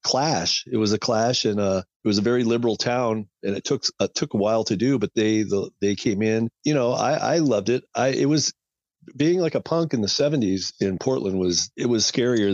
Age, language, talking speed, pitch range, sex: 40-59, English, 240 wpm, 95-115 Hz, male